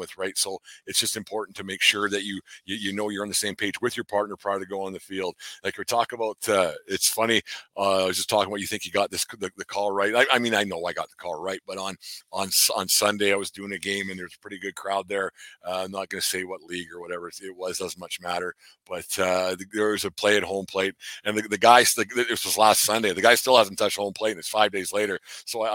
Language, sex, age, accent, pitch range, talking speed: English, male, 50-69, American, 95-105 Hz, 290 wpm